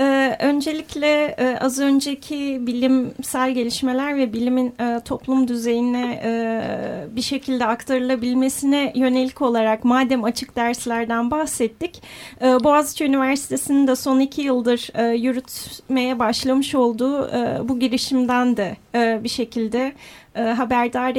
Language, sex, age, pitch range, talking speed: Turkish, female, 30-49, 235-280 Hz, 95 wpm